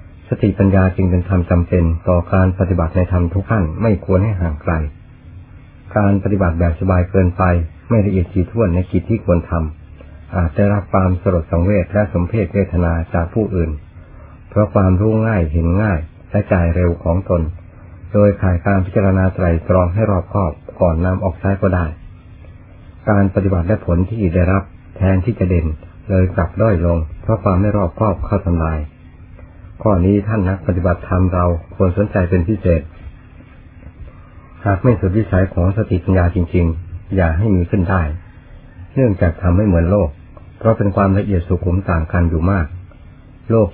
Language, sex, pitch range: Thai, male, 85-100 Hz